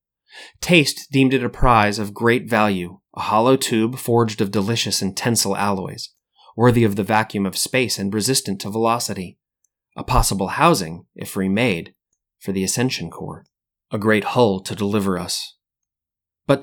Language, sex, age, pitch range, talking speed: English, male, 30-49, 100-120 Hz, 155 wpm